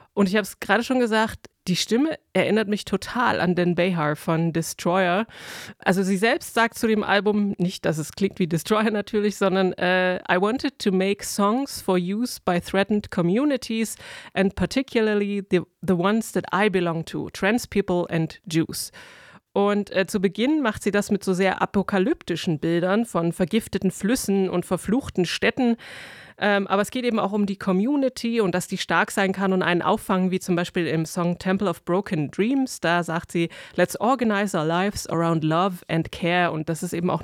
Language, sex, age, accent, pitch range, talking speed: German, female, 30-49, German, 180-215 Hz, 190 wpm